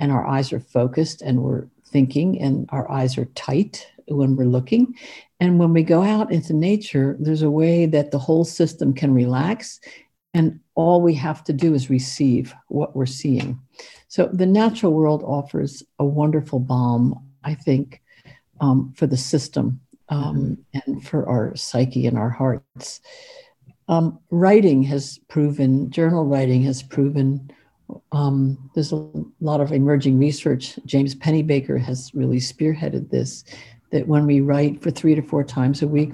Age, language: 60-79, English